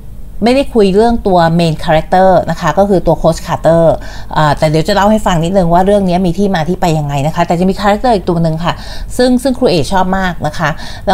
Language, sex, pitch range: Thai, female, 155-200 Hz